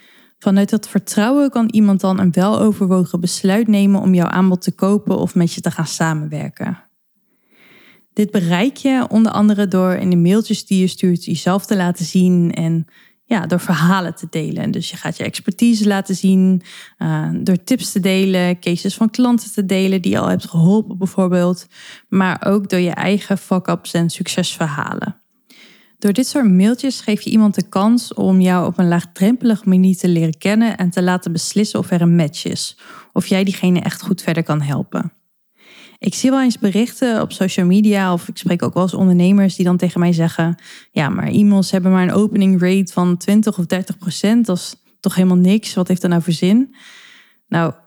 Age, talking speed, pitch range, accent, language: 20-39, 190 wpm, 180-215 Hz, Dutch, Dutch